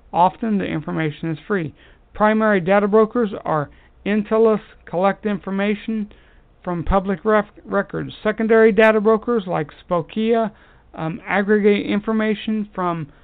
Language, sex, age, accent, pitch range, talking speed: English, male, 60-79, American, 160-210 Hz, 115 wpm